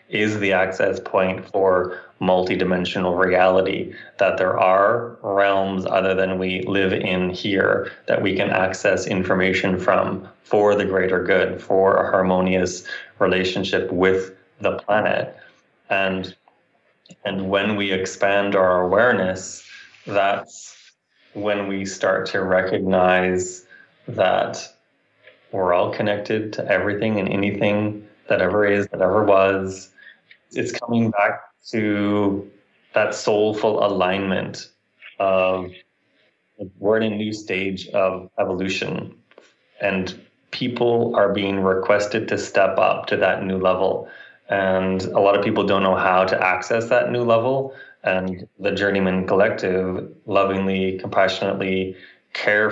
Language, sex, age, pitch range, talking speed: English, male, 20-39, 95-100 Hz, 125 wpm